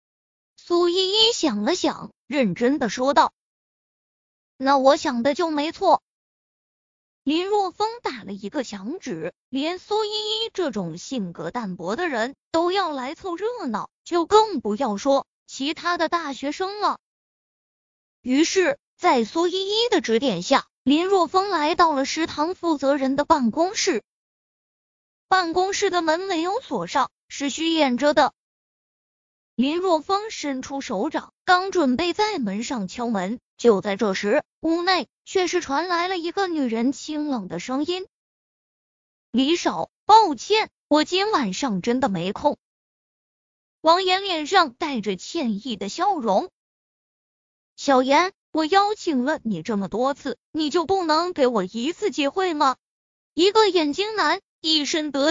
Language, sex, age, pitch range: Chinese, female, 20-39, 255-360 Hz